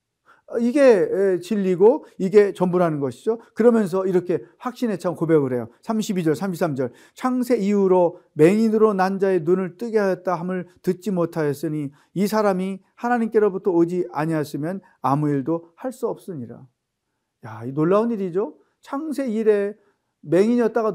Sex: male